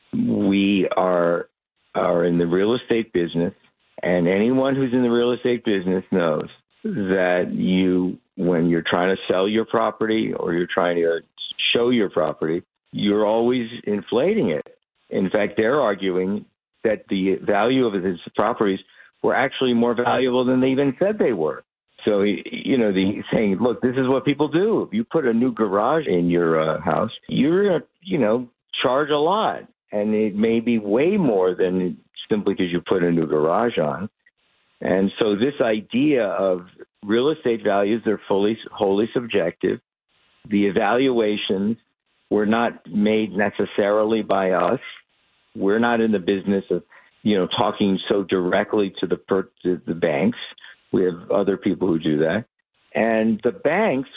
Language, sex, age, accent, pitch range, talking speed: English, male, 50-69, American, 95-120 Hz, 160 wpm